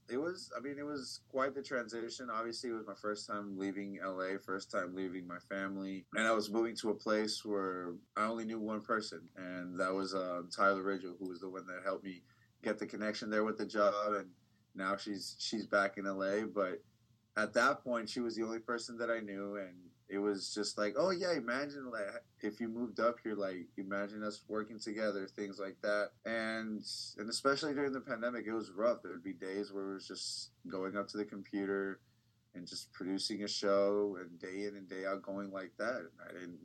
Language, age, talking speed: English, 20-39, 220 wpm